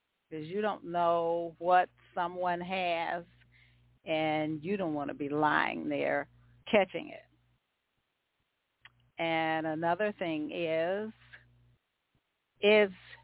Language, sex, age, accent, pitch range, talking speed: English, female, 50-69, American, 125-190 Hz, 100 wpm